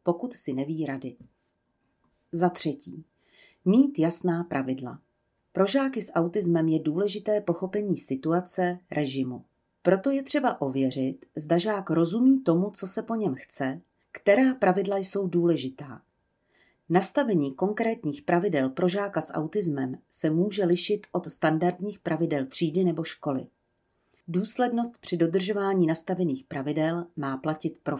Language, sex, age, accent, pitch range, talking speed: Czech, female, 40-59, native, 145-195 Hz, 125 wpm